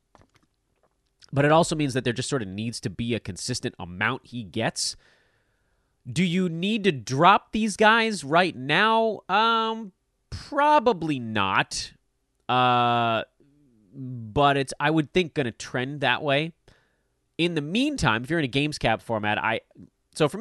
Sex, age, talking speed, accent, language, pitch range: male, 30-49, 155 wpm, American, English, 110-155 Hz